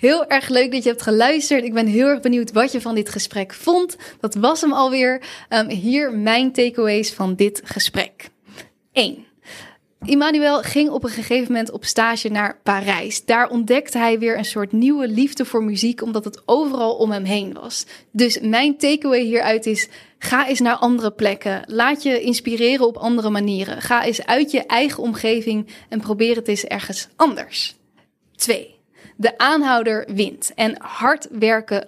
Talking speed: 170 wpm